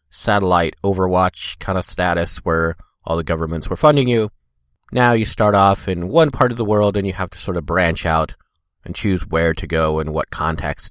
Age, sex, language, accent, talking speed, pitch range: 30-49, male, English, American, 210 wpm, 85-110 Hz